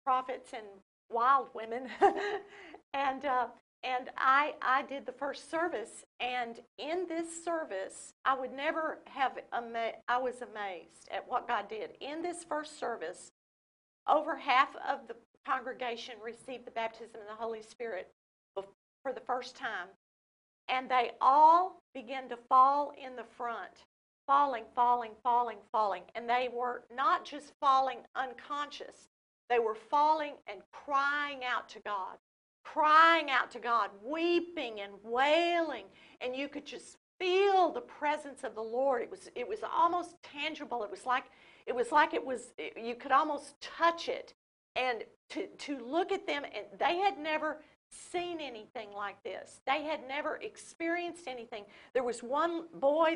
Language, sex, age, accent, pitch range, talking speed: English, female, 50-69, American, 245-315 Hz, 155 wpm